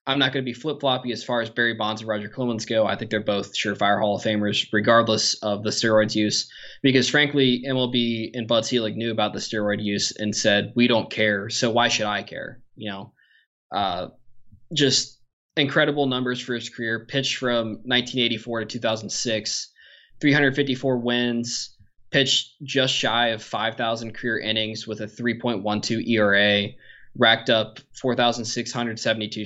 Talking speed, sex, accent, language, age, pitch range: 160 wpm, male, American, English, 20-39, 105-125 Hz